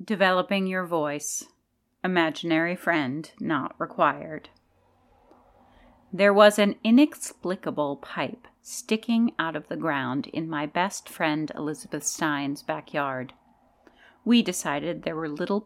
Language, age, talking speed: English, 40-59, 110 wpm